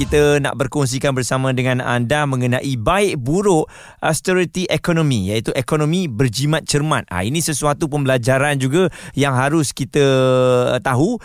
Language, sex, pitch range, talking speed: Malay, male, 120-155 Hz, 130 wpm